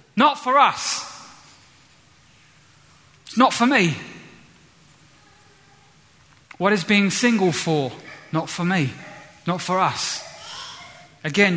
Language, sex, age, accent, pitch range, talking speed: English, male, 30-49, British, 160-215 Hz, 100 wpm